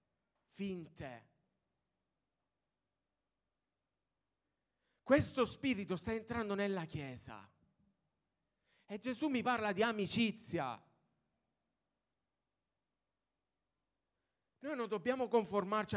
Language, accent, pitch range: Italian, native, 150-205 Hz